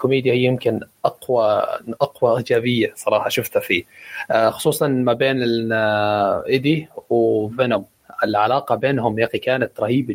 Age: 20-39